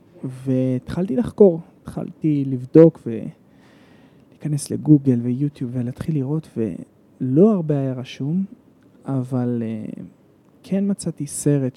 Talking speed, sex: 85 wpm, male